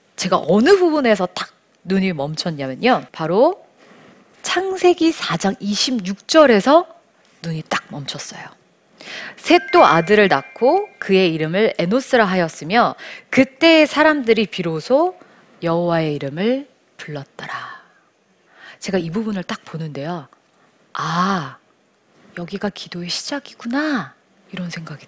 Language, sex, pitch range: Korean, female, 165-240 Hz